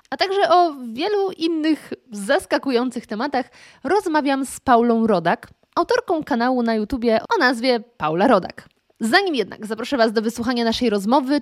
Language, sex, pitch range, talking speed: Polish, female, 215-280 Hz, 140 wpm